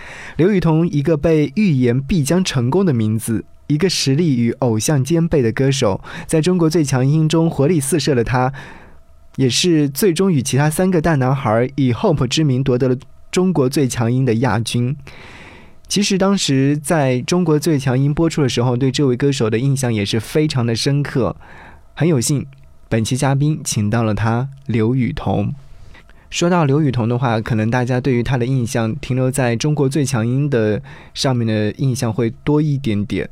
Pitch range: 110-145 Hz